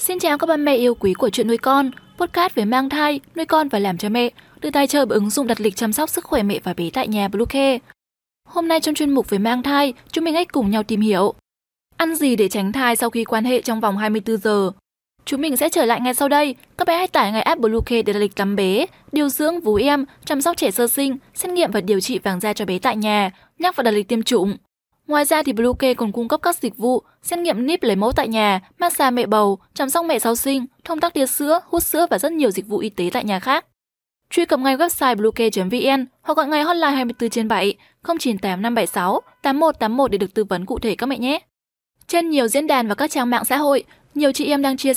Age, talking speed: 10-29, 260 wpm